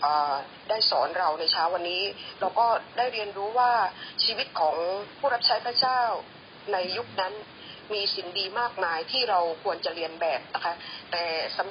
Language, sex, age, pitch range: Thai, female, 20-39, 185-260 Hz